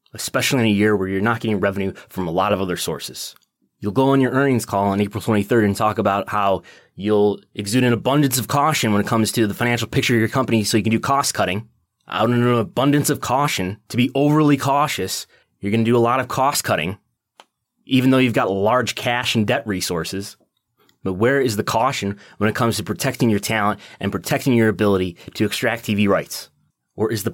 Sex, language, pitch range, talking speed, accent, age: male, English, 100-120 Hz, 220 wpm, American, 20-39